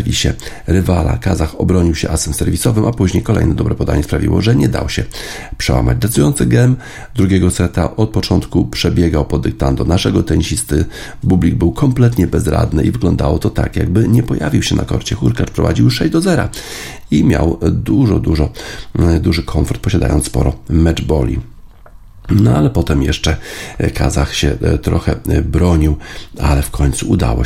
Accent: native